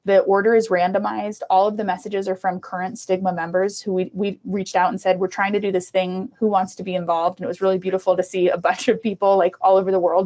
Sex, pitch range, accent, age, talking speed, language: female, 185-220 Hz, American, 20-39, 275 wpm, English